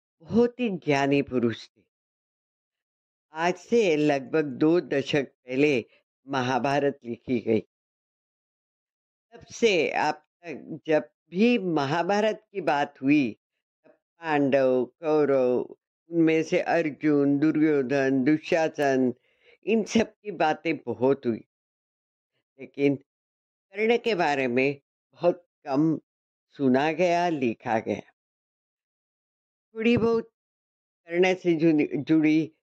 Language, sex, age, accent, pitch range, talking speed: Hindi, female, 50-69, native, 135-190 Hz, 95 wpm